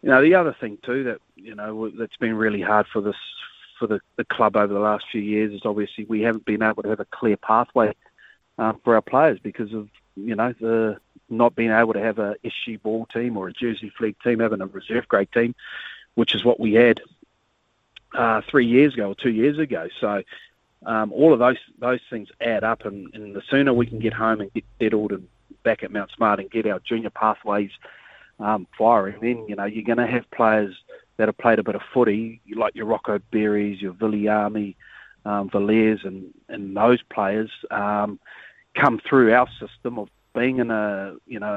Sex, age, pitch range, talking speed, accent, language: male, 40-59, 105-115 Hz, 210 wpm, Australian, English